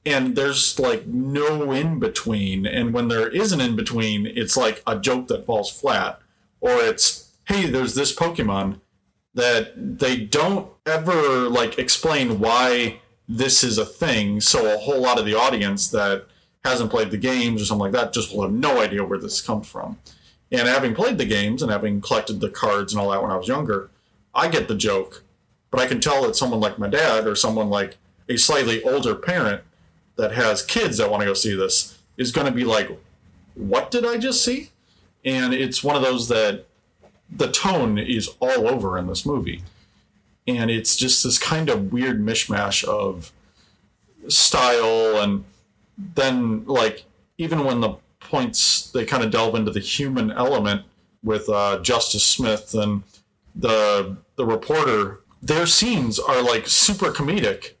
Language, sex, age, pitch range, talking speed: English, male, 30-49, 100-135 Hz, 175 wpm